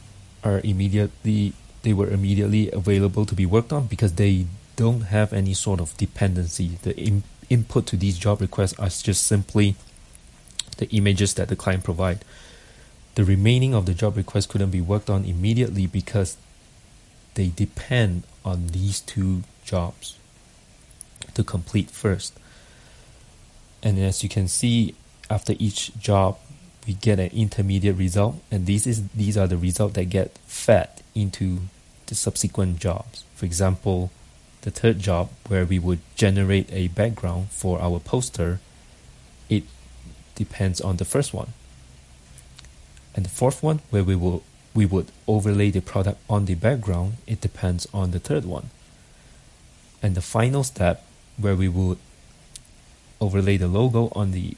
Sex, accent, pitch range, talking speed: male, Malaysian, 95-105 Hz, 150 wpm